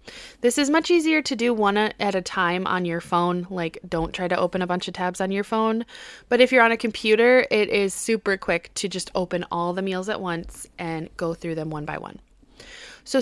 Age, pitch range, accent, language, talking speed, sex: 20-39, 190-245 Hz, American, English, 230 wpm, female